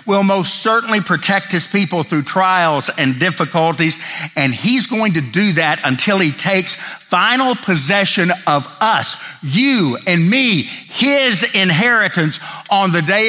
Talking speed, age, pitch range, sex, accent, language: 140 wpm, 50-69, 140-200 Hz, male, American, English